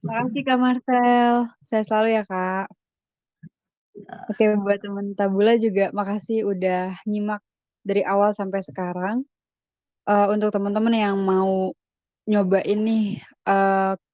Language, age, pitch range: Indonesian, 20-39, 195-215 Hz